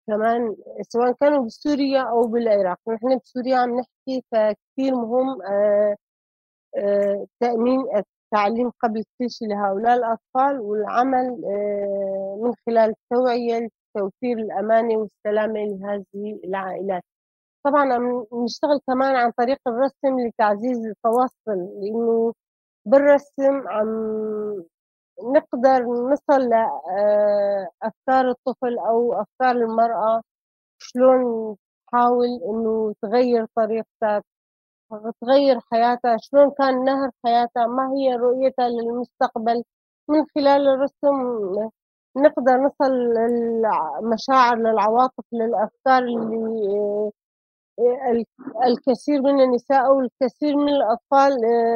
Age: 30-49